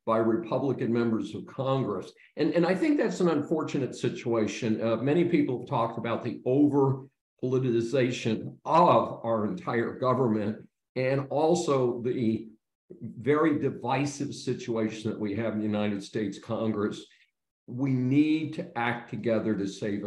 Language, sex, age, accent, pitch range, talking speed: English, male, 50-69, American, 110-140 Hz, 140 wpm